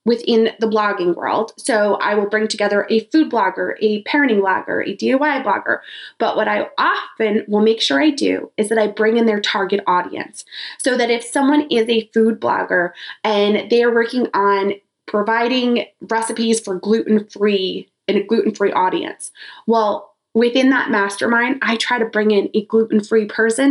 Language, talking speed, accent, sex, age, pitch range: English, 170 wpm, American, female, 20-39, 215-275 Hz